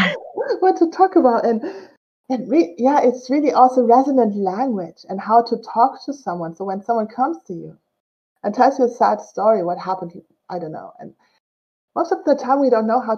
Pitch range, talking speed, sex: 205-260 Hz, 205 wpm, female